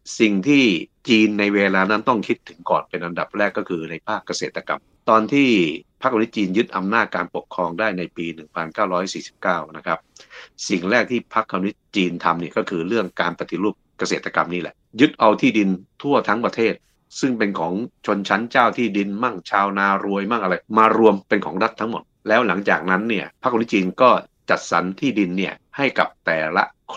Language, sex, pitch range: Thai, male, 90-110 Hz